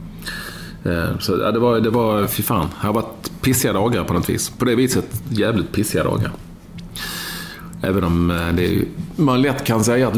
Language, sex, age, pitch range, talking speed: English, male, 40-59, 90-110 Hz, 185 wpm